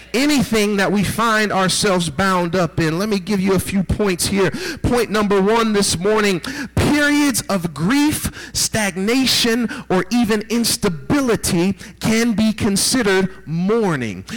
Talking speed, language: 135 wpm, English